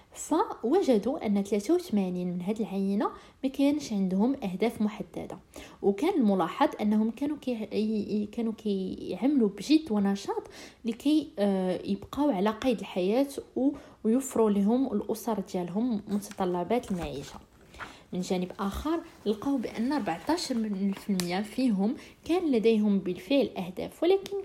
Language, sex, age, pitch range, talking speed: Arabic, female, 20-39, 200-270 Hz, 105 wpm